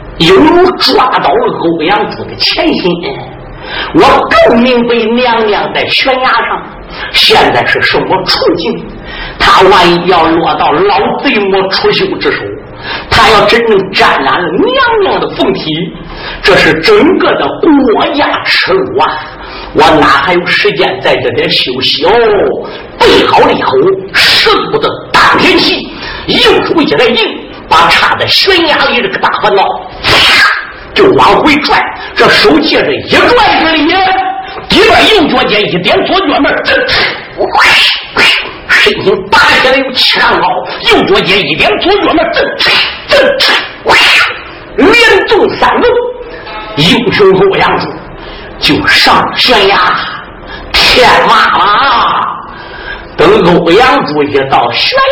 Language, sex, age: Chinese, male, 50-69